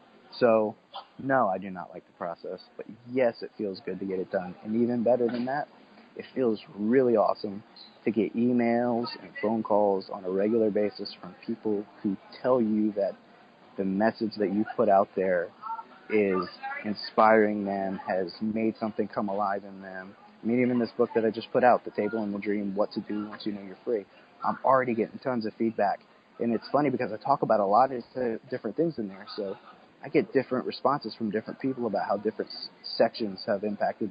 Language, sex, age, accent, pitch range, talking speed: English, male, 30-49, American, 105-120 Hz, 205 wpm